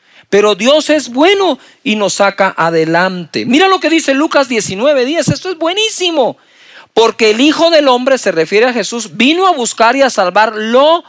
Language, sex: Spanish, male